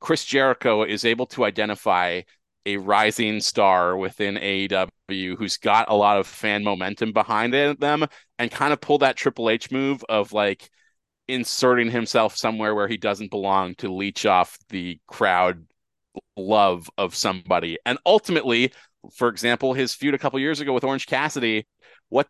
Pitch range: 110-145 Hz